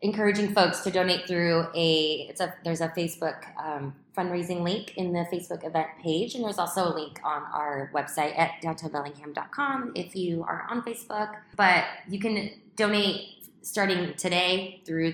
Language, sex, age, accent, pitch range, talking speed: English, female, 20-39, American, 155-190 Hz, 165 wpm